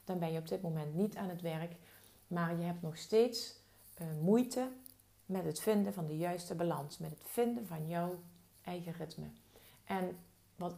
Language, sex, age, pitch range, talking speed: Dutch, female, 40-59, 155-185 Hz, 185 wpm